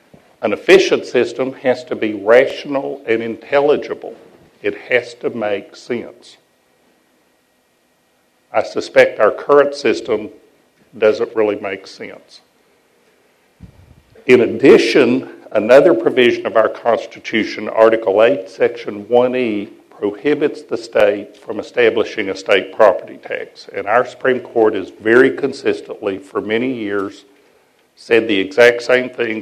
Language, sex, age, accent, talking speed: English, male, 60-79, American, 120 wpm